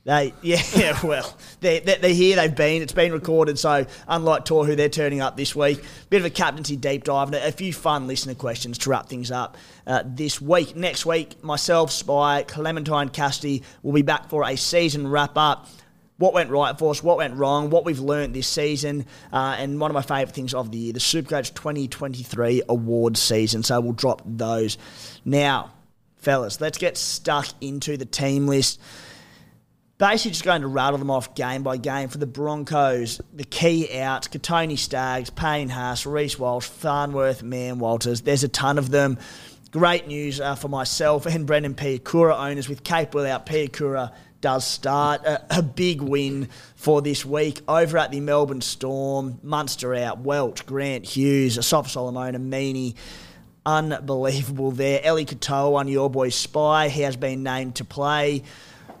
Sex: male